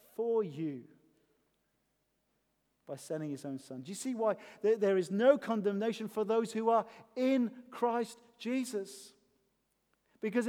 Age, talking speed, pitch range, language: 40-59, 130 wpm, 155-210 Hz, English